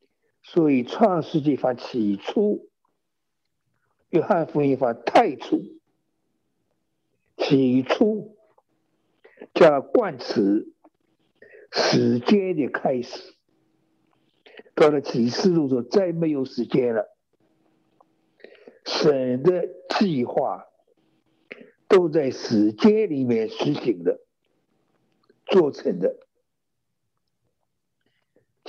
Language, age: Chinese, 60-79